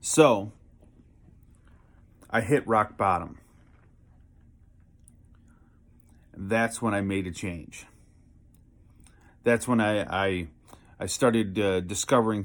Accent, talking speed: American, 90 wpm